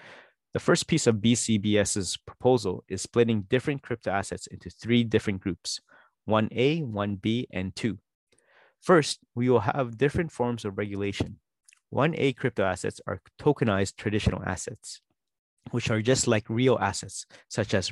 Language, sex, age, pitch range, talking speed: English, male, 30-49, 100-125 Hz, 140 wpm